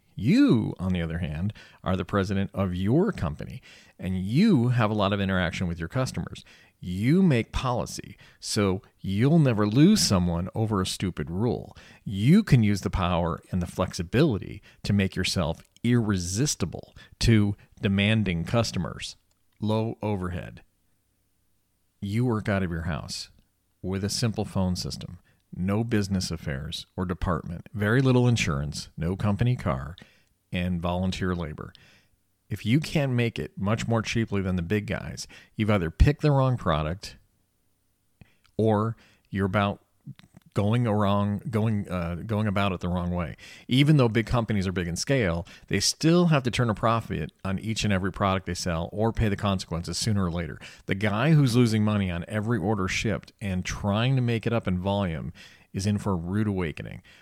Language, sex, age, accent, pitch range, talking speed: English, male, 40-59, American, 90-110 Hz, 165 wpm